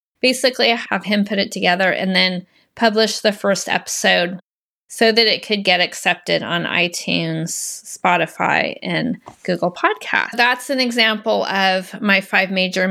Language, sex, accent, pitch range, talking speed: English, female, American, 190-230 Hz, 150 wpm